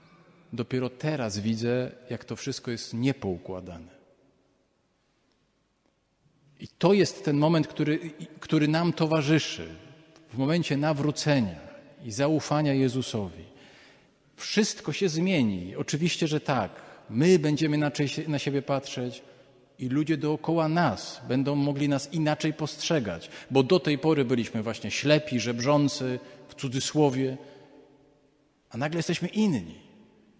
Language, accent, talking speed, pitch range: Polish, native, 115 wpm, 125-160 Hz